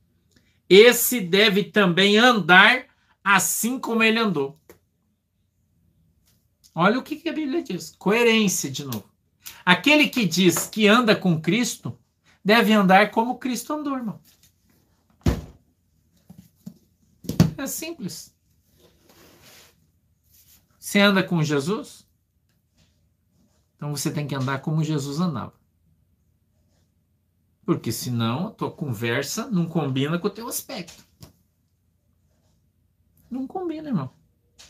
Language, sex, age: Portuguese, male, 50-69